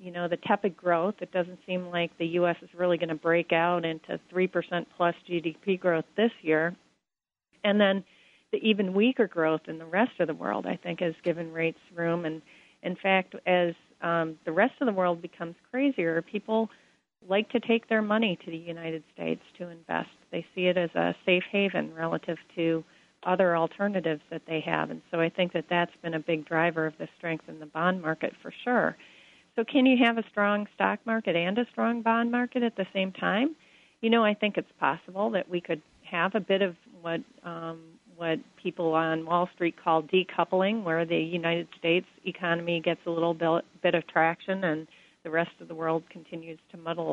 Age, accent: 40-59, American